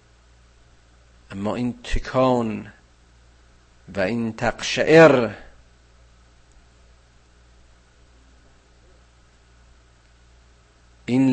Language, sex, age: Persian, male, 50-69